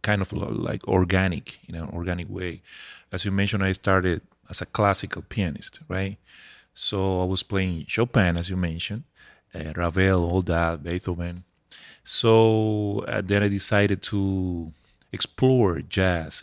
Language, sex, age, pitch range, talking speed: English, male, 30-49, 95-115 Hz, 150 wpm